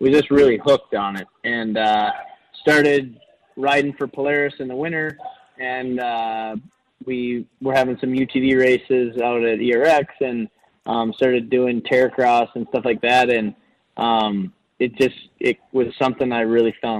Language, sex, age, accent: English, male, 20-39, American